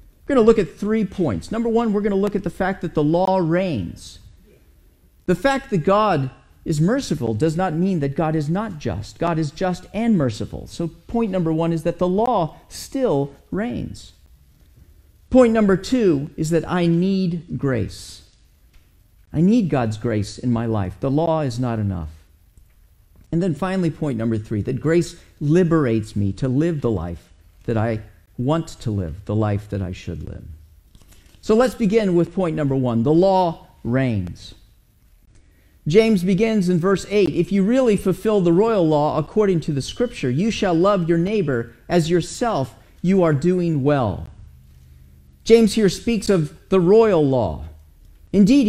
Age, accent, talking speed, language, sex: 50-69, American, 170 wpm, English, male